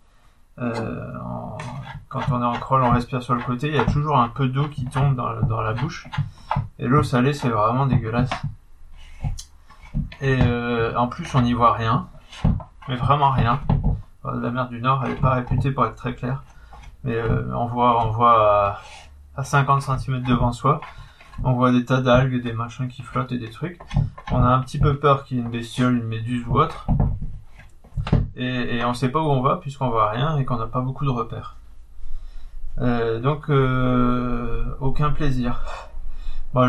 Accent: French